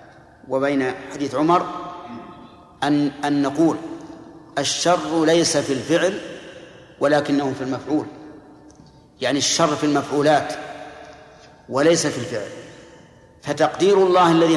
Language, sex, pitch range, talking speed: Arabic, male, 145-170 Hz, 95 wpm